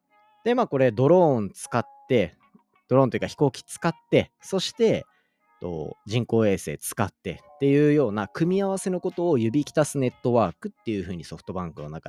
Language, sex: Japanese, male